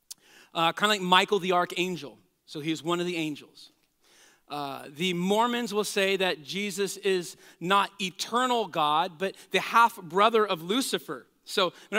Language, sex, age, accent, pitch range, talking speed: English, male, 40-59, American, 175-230 Hz, 170 wpm